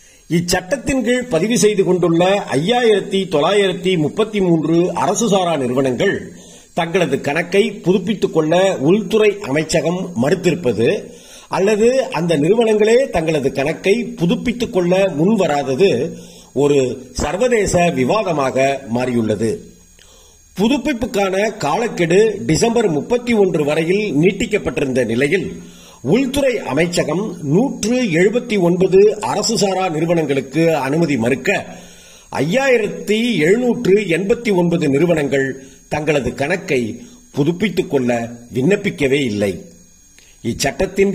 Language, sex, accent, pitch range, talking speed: Tamil, male, native, 145-210 Hz, 75 wpm